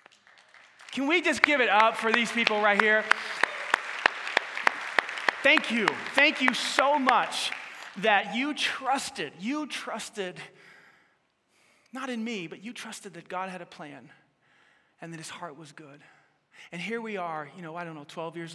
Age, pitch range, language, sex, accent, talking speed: 30-49, 145-225 Hz, English, male, American, 160 wpm